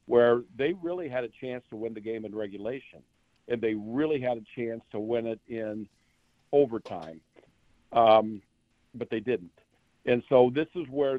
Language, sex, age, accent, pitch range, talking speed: English, male, 60-79, American, 110-135 Hz, 170 wpm